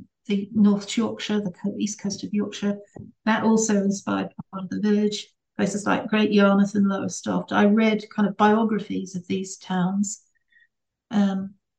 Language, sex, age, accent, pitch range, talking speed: English, female, 60-79, British, 195-215 Hz, 150 wpm